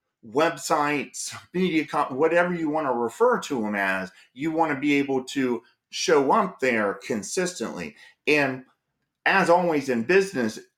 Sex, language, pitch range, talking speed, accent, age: male, English, 125-160 Hz, 140 wpm, American, 30-49